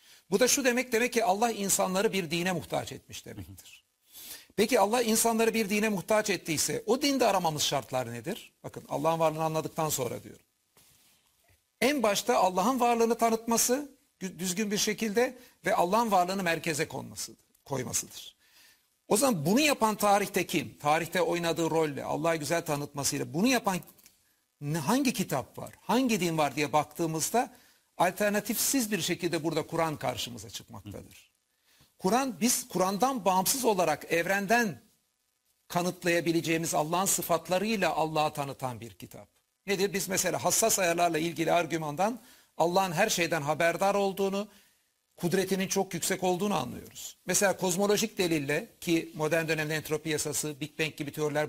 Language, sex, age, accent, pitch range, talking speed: Turkish, male, 60-79, native, 155-210 Hz, 135 wpm